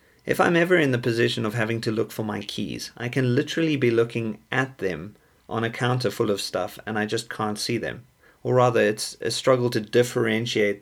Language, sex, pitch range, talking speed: English, male, 100-125 Hz, 215 wpm